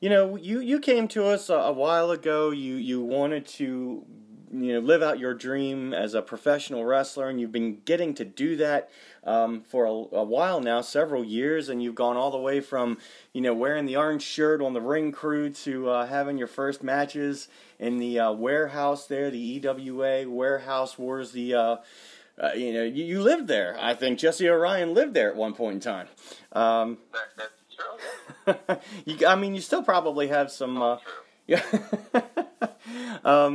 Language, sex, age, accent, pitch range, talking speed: English, male, 30-49, American, 125-155 Hz, 180 wpm